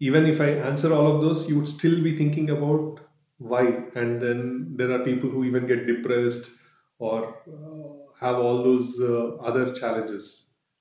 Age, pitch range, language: 30-49, 130-155 Hz, English